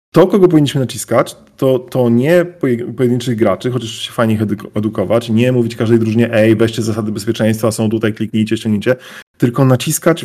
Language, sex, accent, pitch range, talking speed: Polish, male, native, 115-145 Hz, 160 wpm